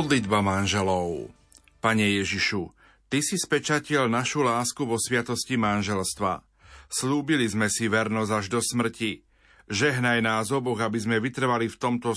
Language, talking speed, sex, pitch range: Slovak, 140 wpm, male, 115-130 Hz